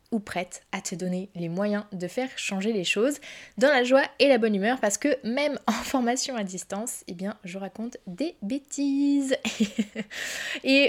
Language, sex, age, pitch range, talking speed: French, female, 20-39, 205-255 Hz, 185 wpm